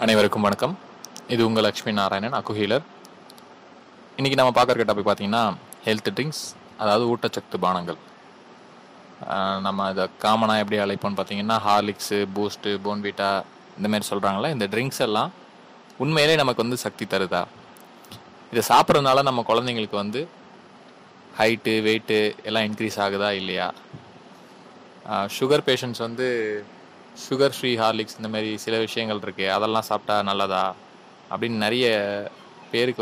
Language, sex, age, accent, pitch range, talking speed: Tamil, male, 20-39, native, 100-120 Hz, 115 wpm